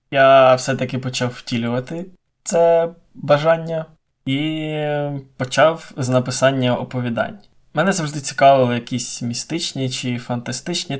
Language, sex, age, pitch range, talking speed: Ukrainian, male, 20-39, 120-135 Hz, 100 wpm